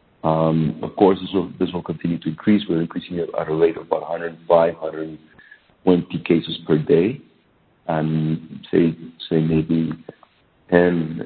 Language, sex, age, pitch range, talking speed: English, male, 50-69, 85-100 Hz, 145 wpm